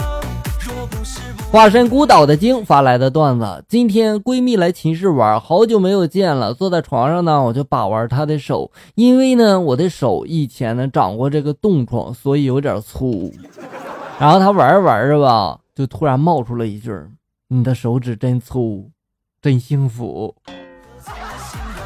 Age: 20-39